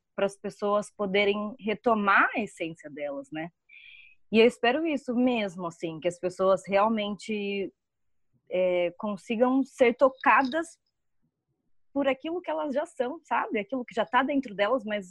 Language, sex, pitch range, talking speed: Portuguese, female, 185-255 Hz, 145 wpm